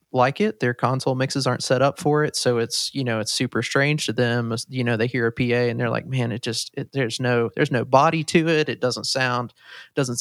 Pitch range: 120-140 Hz